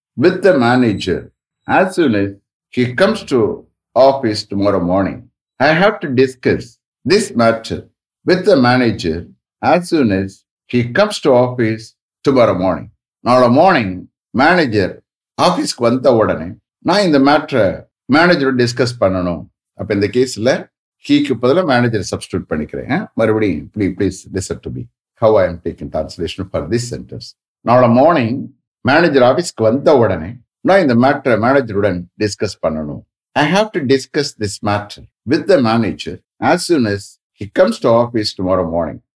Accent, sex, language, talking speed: Indian, male, English, 140 wpm